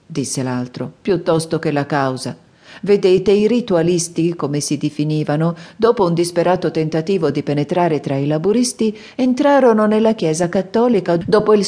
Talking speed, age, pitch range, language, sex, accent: 140 wpm, 50-69, 150-195 Hz, Italian, female, native